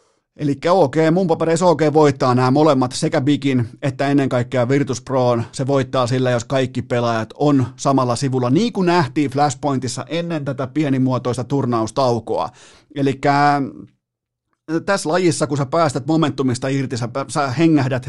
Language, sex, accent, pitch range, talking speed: Finnish, male, native, 125-155 Hz, 145 wpm